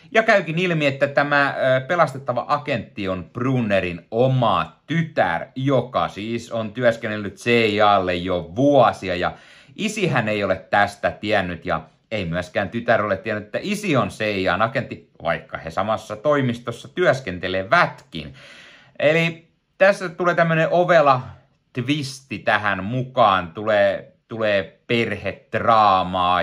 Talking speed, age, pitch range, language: 115 wpm, 30-49, 90-130 Hz, Finnish